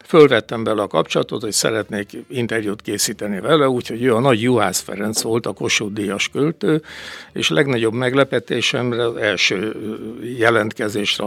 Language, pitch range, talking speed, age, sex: Hungarian, 105-125 Hz, 135 wpm, 60-79, male